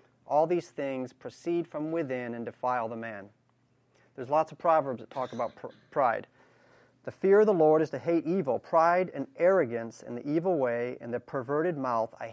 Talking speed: 195 wpm